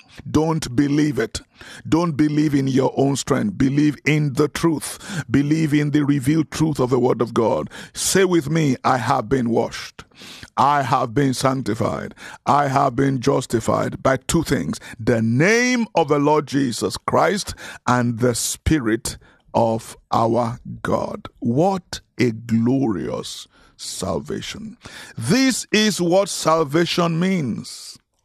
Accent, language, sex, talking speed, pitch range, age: Nigerian, English, male, 135 wpm, 125-160 Hz, 50-69